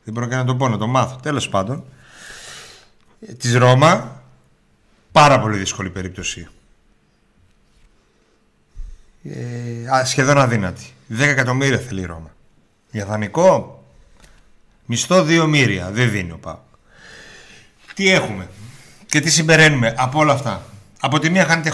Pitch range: 110-140 Hz